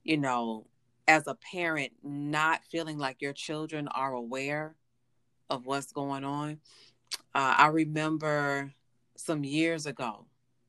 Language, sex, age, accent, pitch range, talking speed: English, female, 30-49, American, 125-165 Hz, 125 wpm